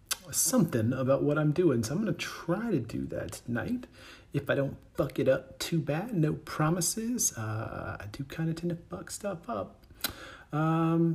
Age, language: 40-59, English